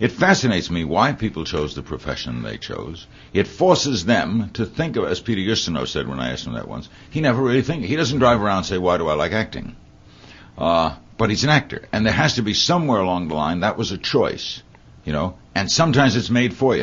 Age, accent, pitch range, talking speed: 60-79, American, 85-120 Hz, 240 wpm